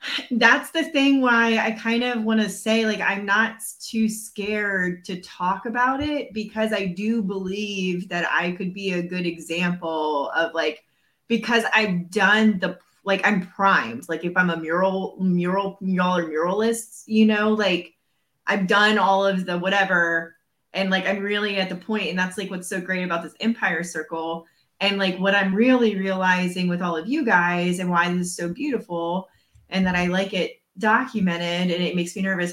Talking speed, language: 185 wpm, English